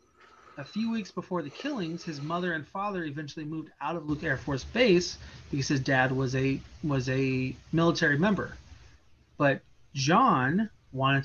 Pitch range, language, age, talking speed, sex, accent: 135-175 Hz, English, 20-39, 160 wpm, male, American